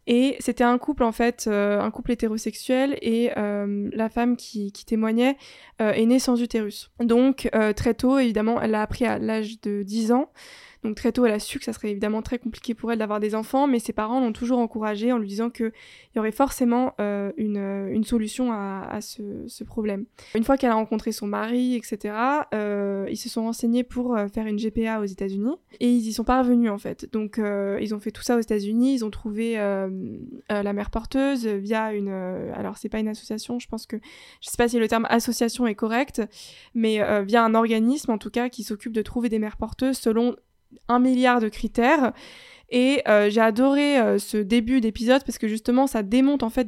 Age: 20-39